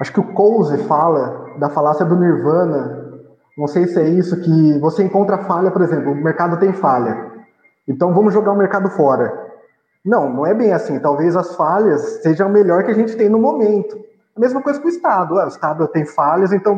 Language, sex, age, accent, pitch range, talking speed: Portuguese, male, 20-39, Brazilian, 175-225 Hz, 205 wpm